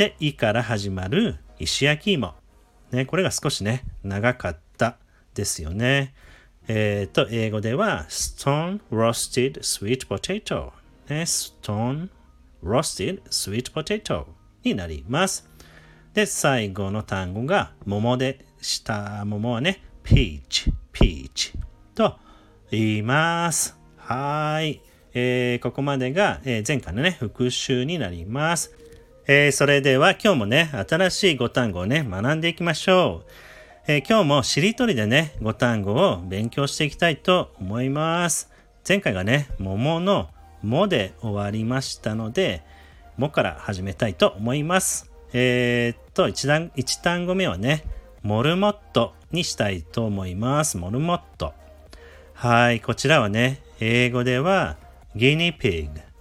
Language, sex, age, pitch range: Japanese, male, 40-59, 100-150 Hz